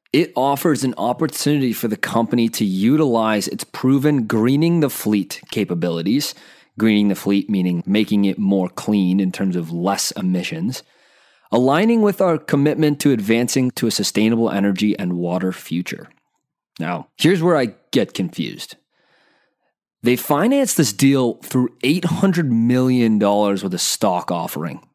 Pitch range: 100-130 Hz